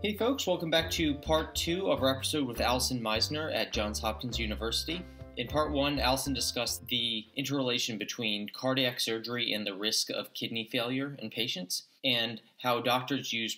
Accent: American